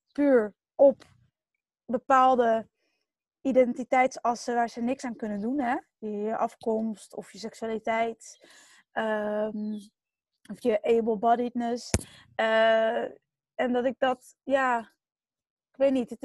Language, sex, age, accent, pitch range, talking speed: English, female, 20-39, Dutch, 225-260 Hz, 110 wpm